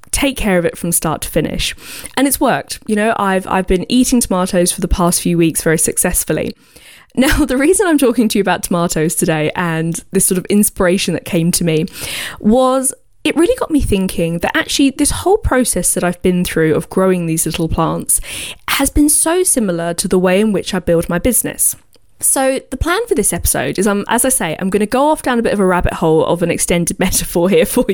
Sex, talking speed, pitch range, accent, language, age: female, 225 wpm, 175-245 Hz, British, English, 20-39